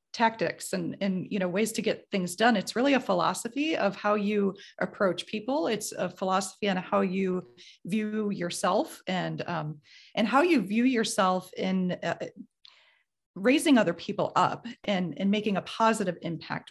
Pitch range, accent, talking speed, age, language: 185-225 Hz, American, 165 wpm, 30-49, English